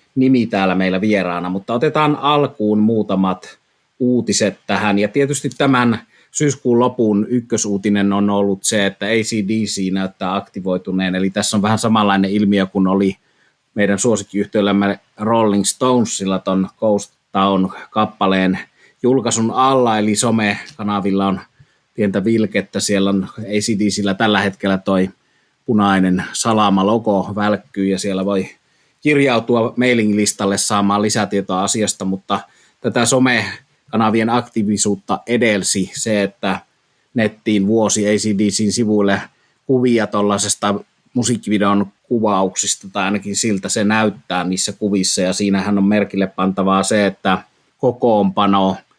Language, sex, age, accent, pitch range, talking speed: Finnish, male, 30-49, native, 100-110 Hz, 115 wpm